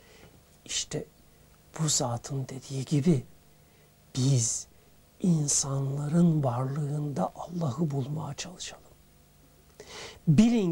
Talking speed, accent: 65 wpm, native